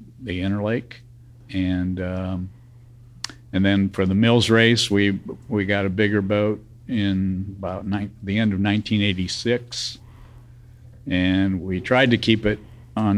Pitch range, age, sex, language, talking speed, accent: 95-120 Hz, 50-69, male, English, 130 wpm, American